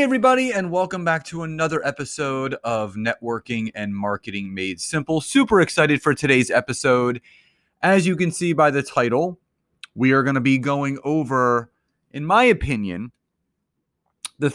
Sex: male